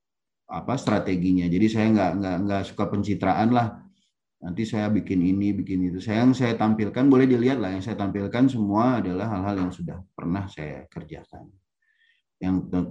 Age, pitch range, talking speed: 30-49, 95-130 Hz, 160 wpm